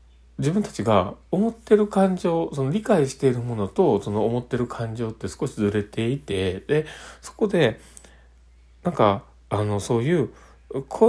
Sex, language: male, Japanese